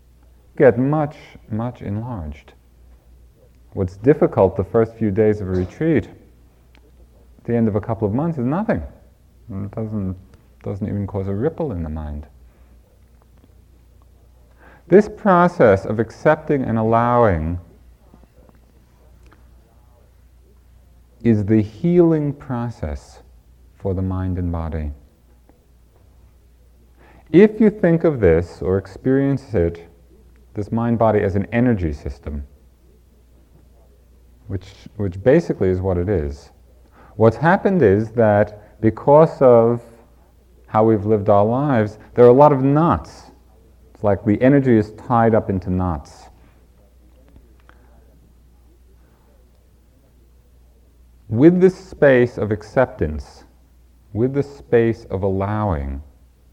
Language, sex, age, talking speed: English, male, 40-59, 110 wpm